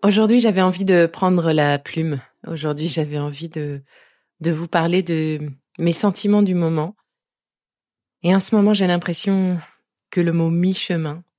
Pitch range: 160-200 Hz